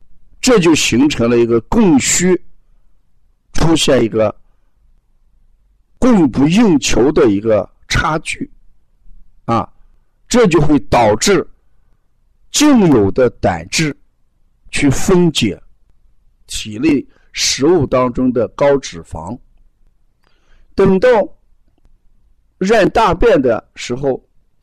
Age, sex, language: 50-69, male, Chinese